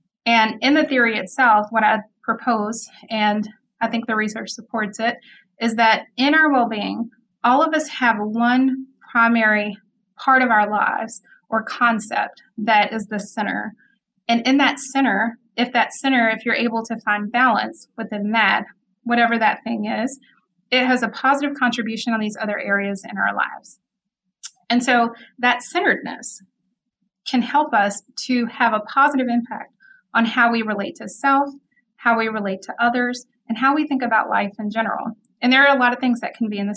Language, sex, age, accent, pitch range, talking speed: English, female, 30-49, American, 215-245 Hz, 180 wpm